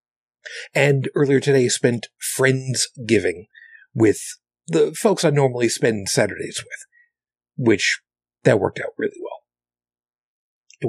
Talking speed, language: 115 wpm, English